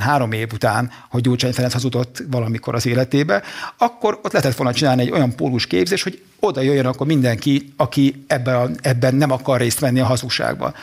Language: Hungarian